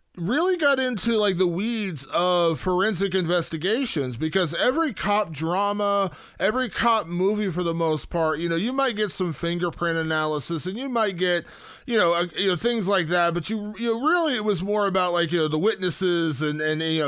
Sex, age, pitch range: male, 20-39, 155-195 Hz